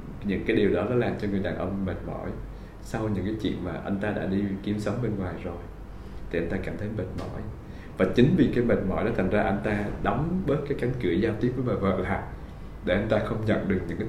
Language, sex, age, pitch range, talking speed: Vietnamese, male, 20-39, 95-110 Hz, 270 wpm